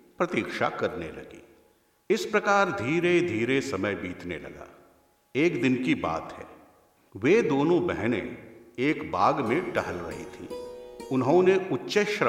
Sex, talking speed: male, 120 wpm